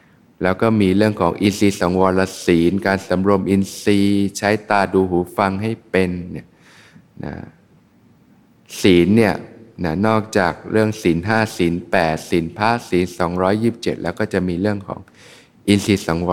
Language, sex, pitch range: Thai, male, 85-105 Hz